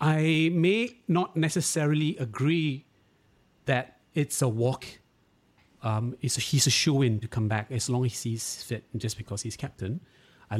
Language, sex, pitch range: English, male, 115-145 Hz